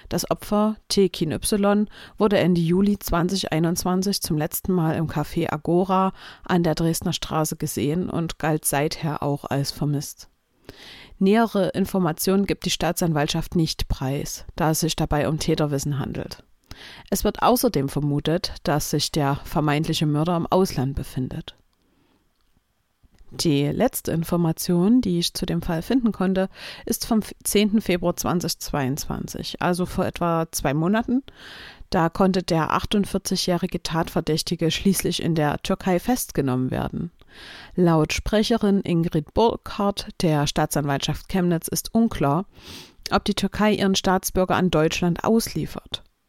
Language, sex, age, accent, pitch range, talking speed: German, female, 50-69, German, 155-190 Hz, 130 wpm